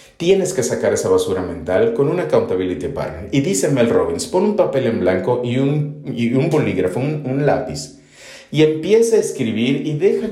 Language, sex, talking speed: English, male, 190 wpm